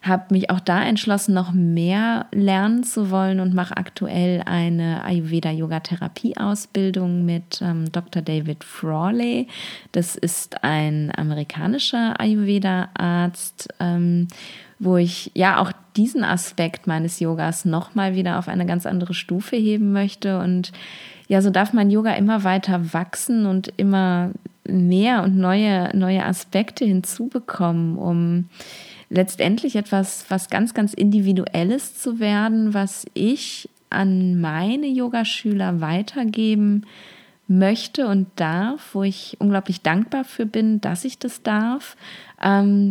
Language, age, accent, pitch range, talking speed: German, 20-39, German, 180-210 Hz, 125 wpm